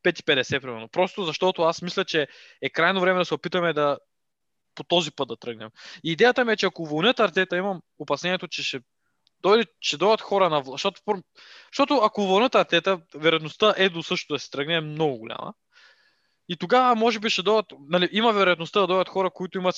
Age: 20-39